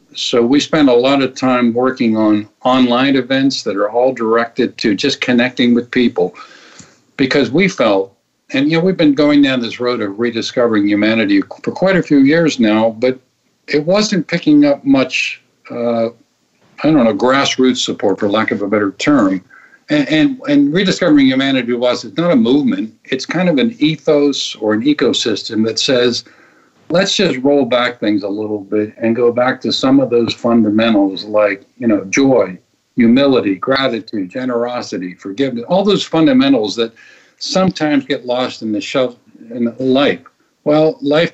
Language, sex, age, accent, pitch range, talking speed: English, male, 50-69, American, 115-155 Hz, 170 wpm